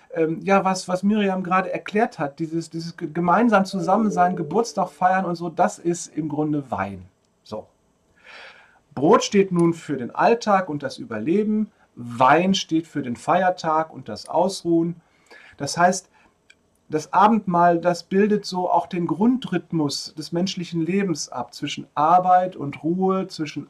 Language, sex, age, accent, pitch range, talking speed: German, male, 40-59, German, 140-180 Hz, 145 wpm